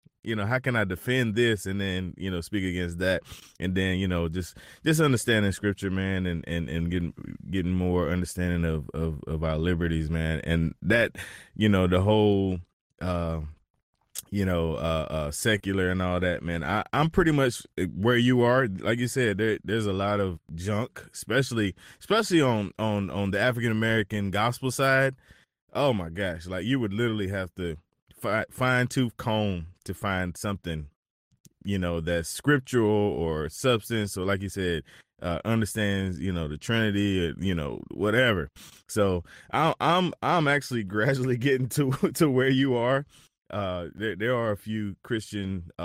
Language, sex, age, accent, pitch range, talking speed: English, male, 20-39, American, 85-110 Hz, 175 wpm